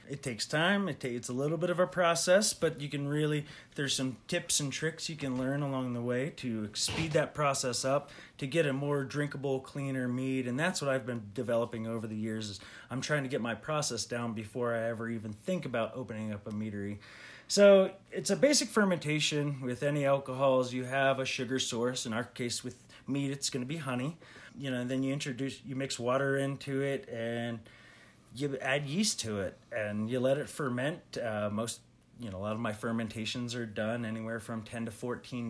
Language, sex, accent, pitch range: English, male, American, 115-140 Hz